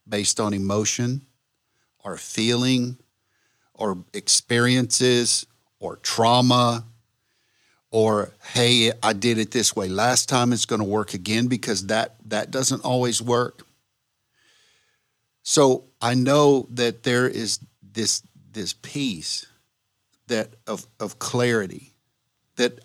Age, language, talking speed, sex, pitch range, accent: 50-69, English, 115 wpm, male, 105-125 Hz, American